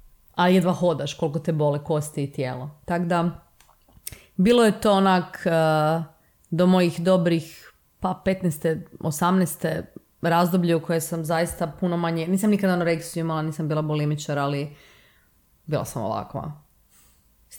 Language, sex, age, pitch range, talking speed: Croatian, female, 30-49, 140-190 Hz, 135 wpm